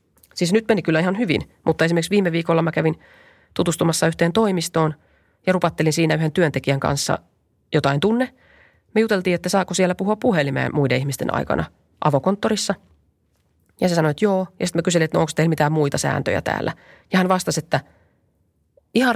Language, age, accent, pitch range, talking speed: Finnish, 30-49, native, 135-185 Hz, 170 wpm